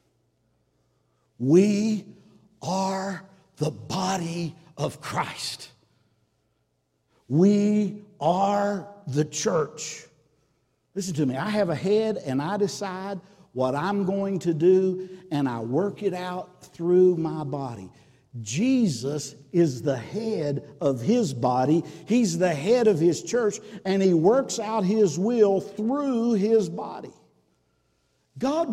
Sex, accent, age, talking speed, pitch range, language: male, American, 60-79, 115 wpm, 135-195 Hz, English